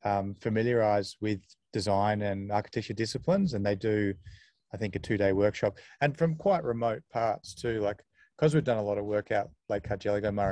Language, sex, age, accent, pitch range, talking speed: English, male, 30-49, Australian, 100-120 Hz, 185 wpm